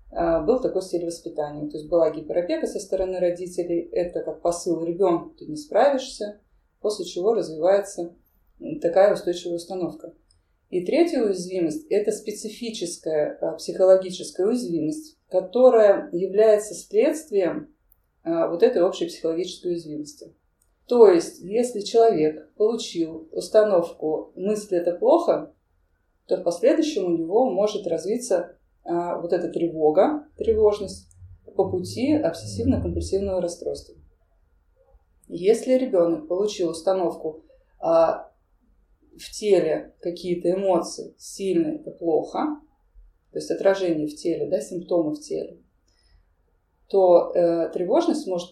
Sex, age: female, 30-49